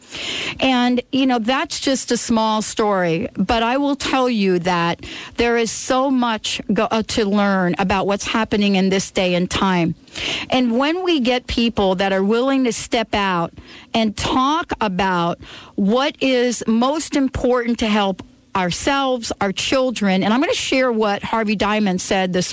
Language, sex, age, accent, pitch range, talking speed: English, female, 50-69, American, 195-250 Hz, 170 wpm